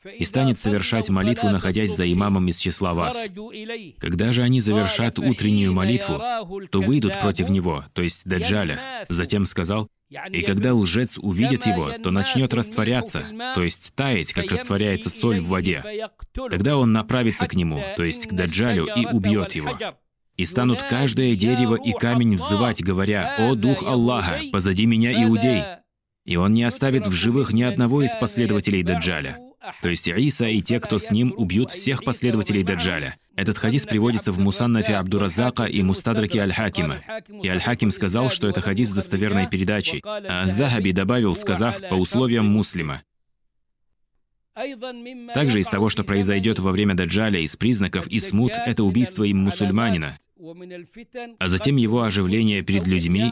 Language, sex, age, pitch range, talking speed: Russian, male, 20-39, 95-125 Hz, 155 wpm